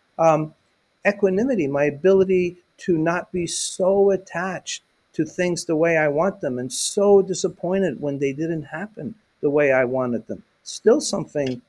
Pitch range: 135-180 Hz